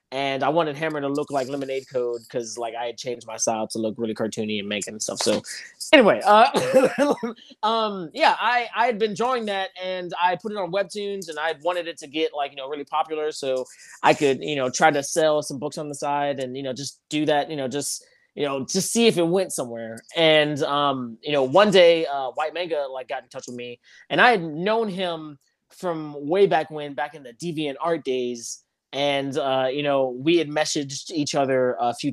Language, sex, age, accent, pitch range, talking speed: English, male, 20-39, American, 130-170 Hz, 230 wpm